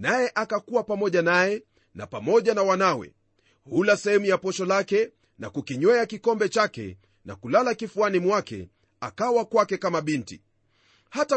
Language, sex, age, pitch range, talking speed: Swahili, male, 40-59, 160-220 Hz, 135 wpm